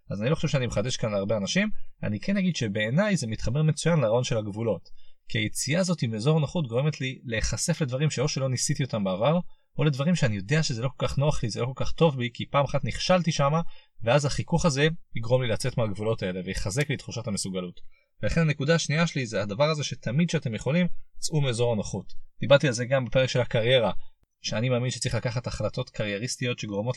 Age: 30-49